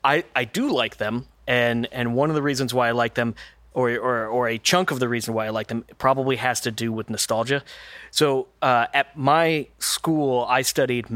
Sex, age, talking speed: male, 30-49, 215 wpm